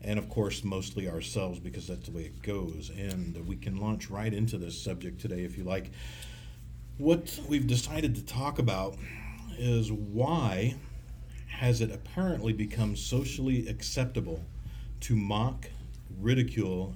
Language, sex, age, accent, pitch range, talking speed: English, male, 50-69, American, 95-120 Hz, 140 wpm